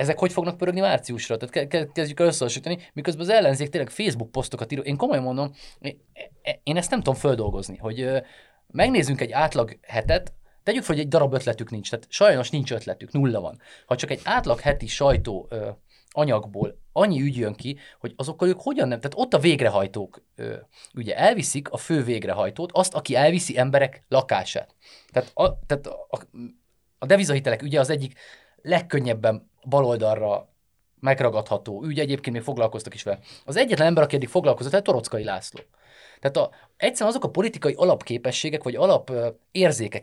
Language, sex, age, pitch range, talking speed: Hungarian, male, 30-49, 115-155 Hz, 155 wpm